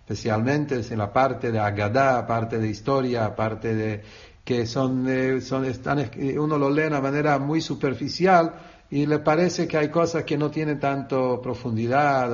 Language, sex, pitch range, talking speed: English, male, 120-155 Hz, 175 wpm